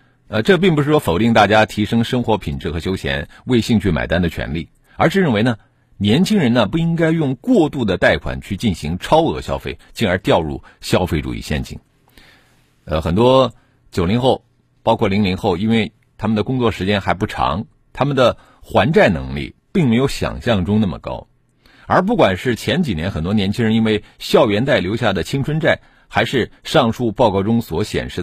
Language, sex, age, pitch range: Chinese, male, 50-69, 95-135 Hz